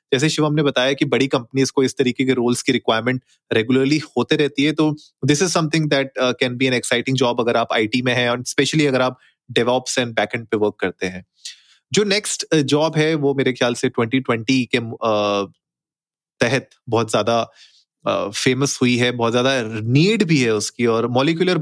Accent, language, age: native, Hindi, 30-49